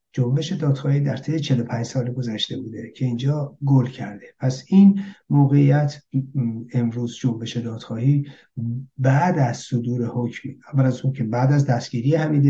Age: 60-79